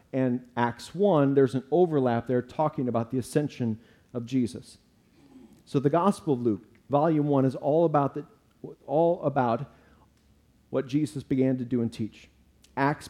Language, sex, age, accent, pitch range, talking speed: English, male, 40-59, American, 125-165 Hz, 155 wpm